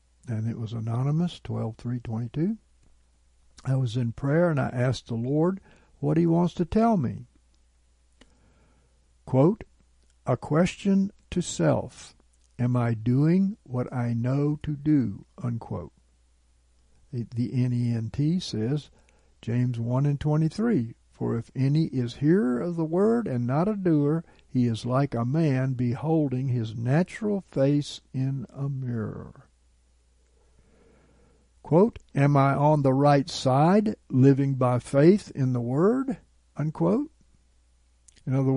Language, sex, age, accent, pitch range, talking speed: English, male, 60-79, American, 110-150 Hz, 135 wpm